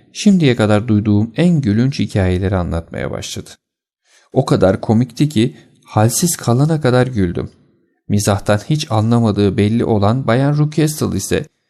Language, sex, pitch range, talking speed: Turkish, male, 95-140 Hz, 125 wpm